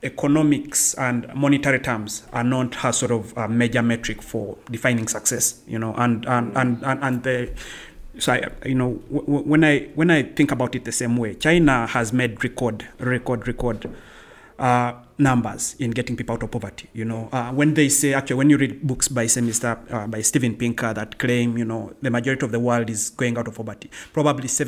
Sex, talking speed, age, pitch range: male, 200 wpm, 30-49, 115-140 Hz